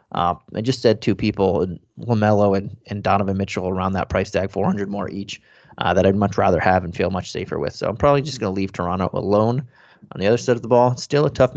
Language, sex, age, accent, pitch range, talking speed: English, male, 30-49, American, 100-120 Hz, 250 wpm